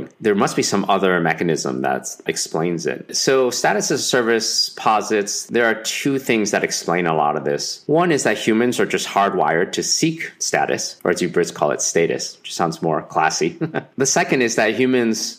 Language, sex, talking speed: English, male, 200 wpm